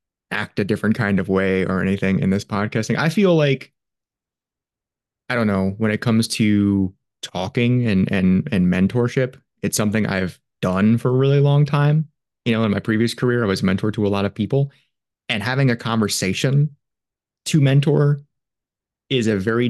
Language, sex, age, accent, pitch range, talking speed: English, male, 20-39, American, 100-125 Hz, 175 wpm